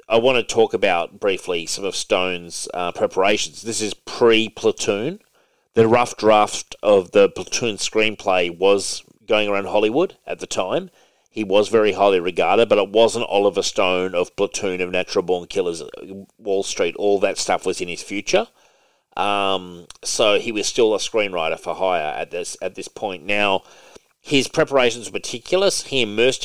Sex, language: male, English